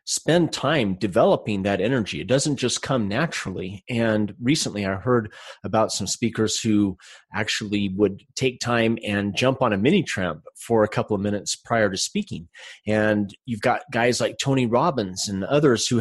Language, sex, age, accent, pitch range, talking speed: English, male, 30-49, American, 105-140 Hz, 170 wpm